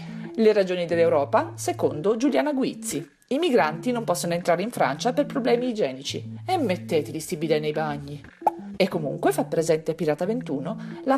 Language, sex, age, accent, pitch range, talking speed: Italian, female, 40-59, native, 170-270 Hz, 145 wpm